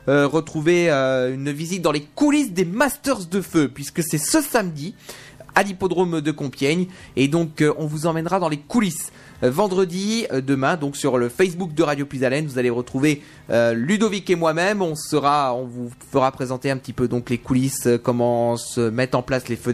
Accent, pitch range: French, 130-185 Hz